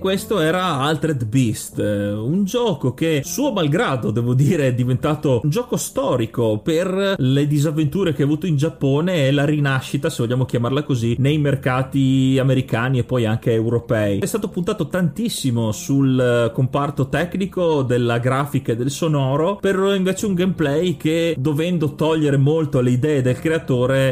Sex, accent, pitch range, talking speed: male, native, 130-180 Hz, 155 wpm